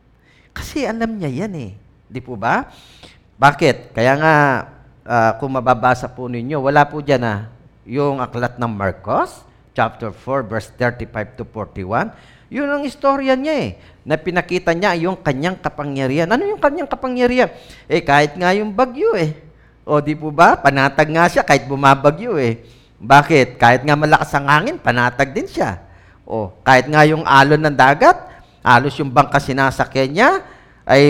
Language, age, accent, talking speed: English, 40-59, Filipino, 155 wpm